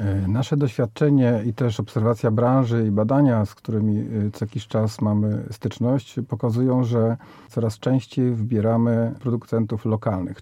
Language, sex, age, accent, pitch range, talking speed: Polish, male, 40-59, native, 110-130 Hz, 125 wpm